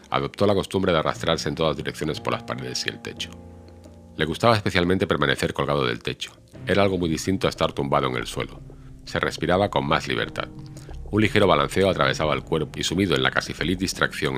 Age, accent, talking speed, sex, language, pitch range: 50-69, Spanish, 205 wpm, male, Spanish, 70-90 Hz